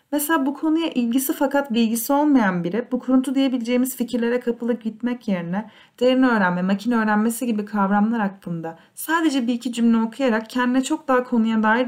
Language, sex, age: Turkish, female, 30-49